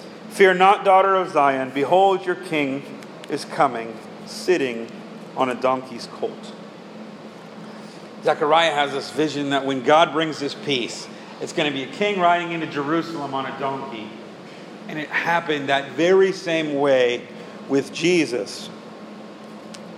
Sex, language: male, English